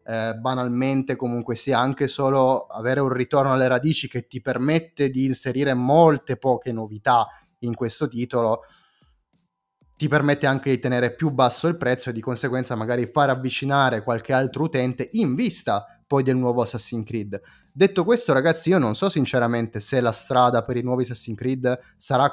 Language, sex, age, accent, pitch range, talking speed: Italian, male, 20-39, native, 115-140 Hz, 165 wpm